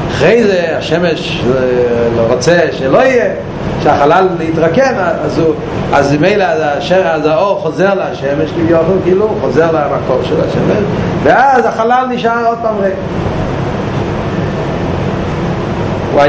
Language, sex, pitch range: Hebrew, male, 175-220 Hz